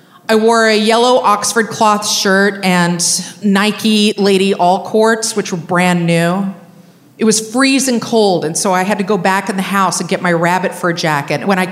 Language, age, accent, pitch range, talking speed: English, 40-59, American, 175-225 Hz, 190 wpm